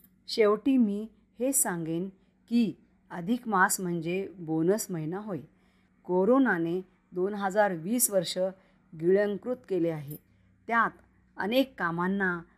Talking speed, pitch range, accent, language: 105 wpm, 175-225 Hz, native, Marathi